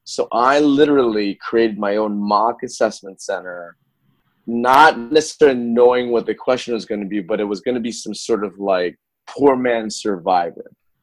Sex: male